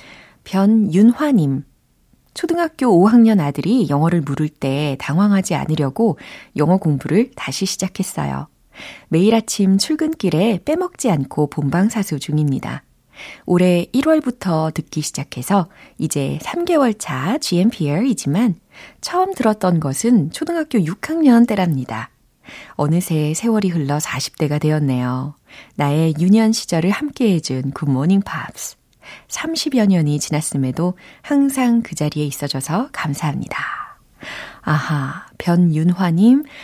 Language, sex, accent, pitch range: Korean, female, native, 150-205 Hz